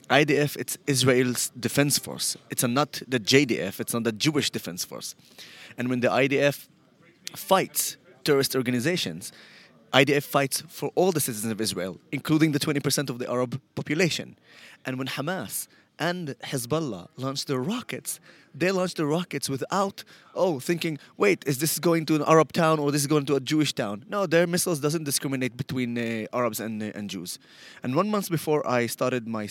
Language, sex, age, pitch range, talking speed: English, male, 20-39, 110-145 Hz, 175 wpm